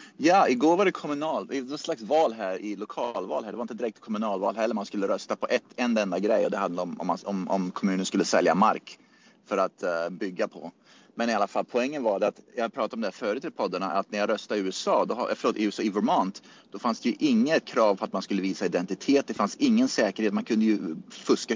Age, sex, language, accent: 30-49, male, Swedish, native